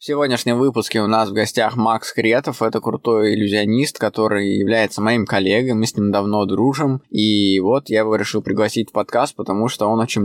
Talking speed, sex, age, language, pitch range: 195 wpm, male, 20-39, Russian, 105-120 Hz